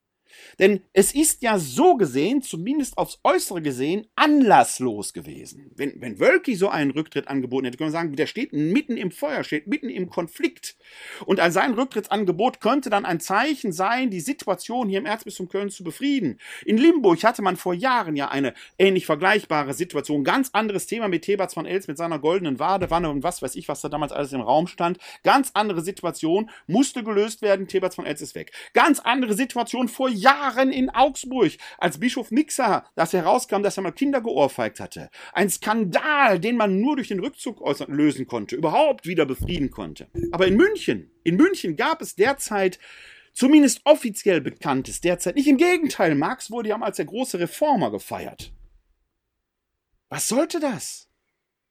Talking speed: 175 wpm